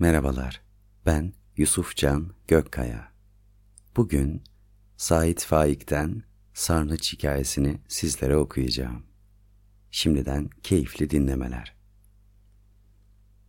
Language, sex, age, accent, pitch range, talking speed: Turkish, male, 40-59, native, 75-100 Hz, 65 wpm